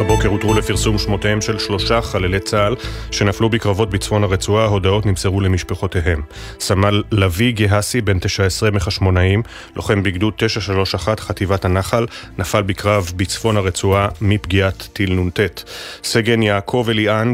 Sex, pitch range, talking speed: male, 100-110 Hz, 125 wpm